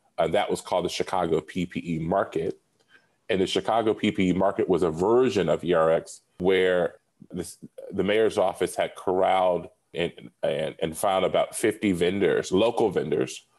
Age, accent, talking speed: 30-49, American, 155 wpm